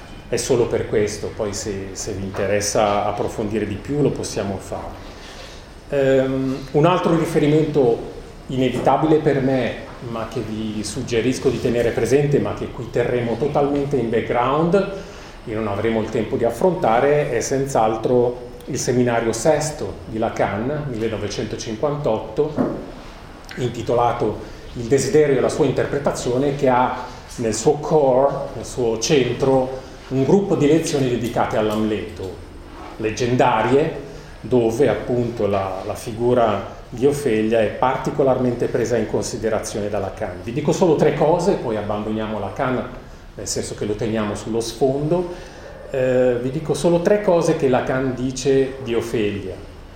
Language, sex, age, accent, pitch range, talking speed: Italian, male, 40-59, native, 110-140 Hz, 135 wpm